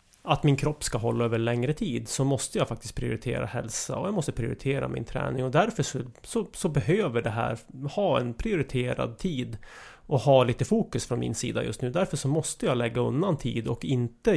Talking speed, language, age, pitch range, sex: 210 wpm, English, 30-49, 120-140 Hz, male